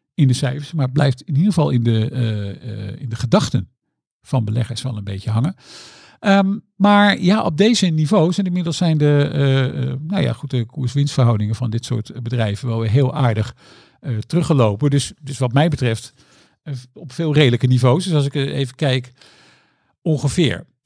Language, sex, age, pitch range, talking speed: Dutch, male, 50-69, 120-145 Hz, 185 wpm